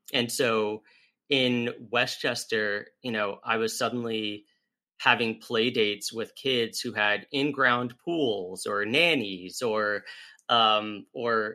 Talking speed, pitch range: 125 wpm, 105-130 Hz